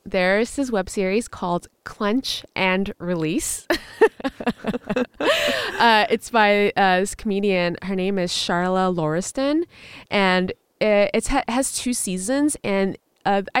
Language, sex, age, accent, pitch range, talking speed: English, female, 20-39, American, 175-225 Hz, 125 wpm